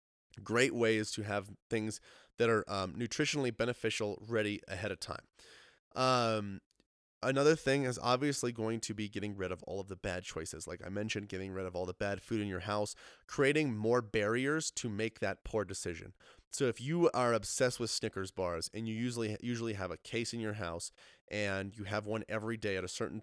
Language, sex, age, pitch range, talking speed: English, male, 20-39, 100-120 Hz, 200 wpm